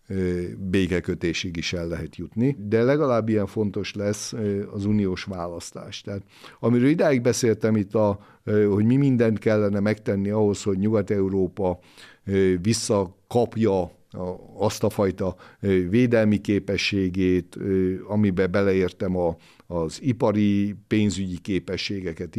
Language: Hungarian